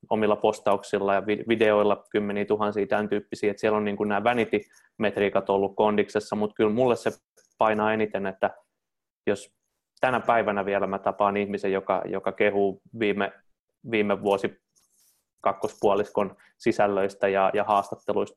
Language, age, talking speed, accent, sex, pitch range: Finnish, 20-39, 135 wpm, native, male, 100-110 Hz